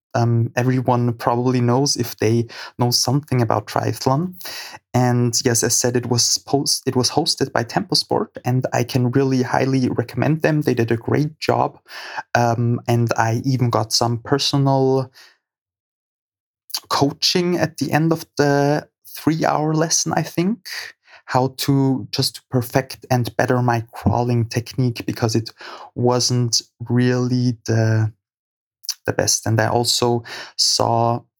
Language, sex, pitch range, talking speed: German, male, 120-135 Hz, 140 wpm